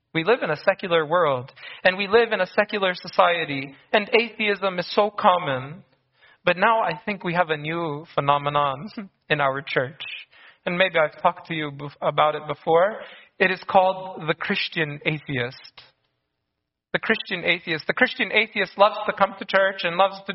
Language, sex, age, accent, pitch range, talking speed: English, male, 30-49, American, 150-195 Hz, 175 wpm